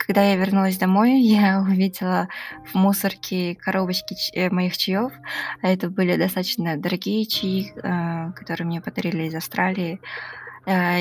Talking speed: 130 wpm